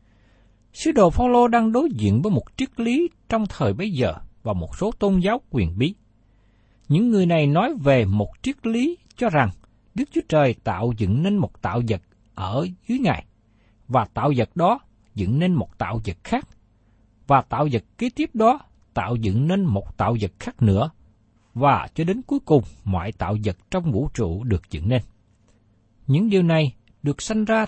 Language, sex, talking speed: Vietnamese, male, 190 wpm